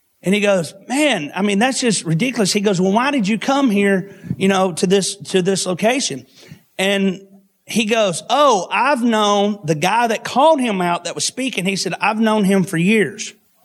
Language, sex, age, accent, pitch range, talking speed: English, male, 40-59, American, 175-220 Hz, 200 wpm